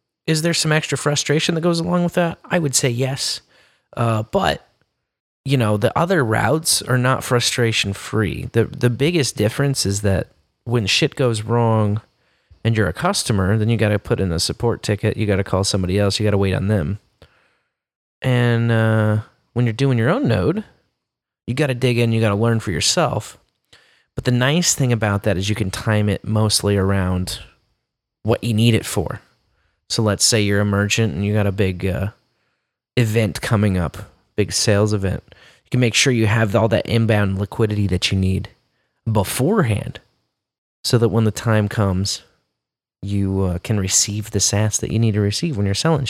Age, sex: 30-49, male